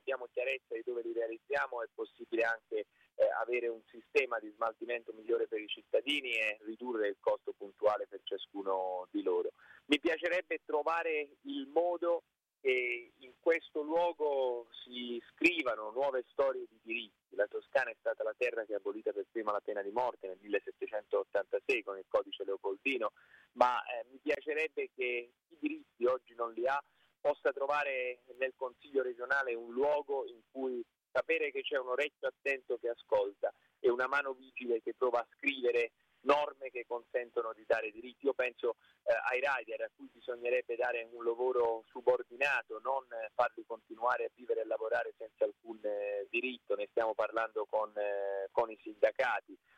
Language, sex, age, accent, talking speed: Italian, male, 30-49, native, 165 wpm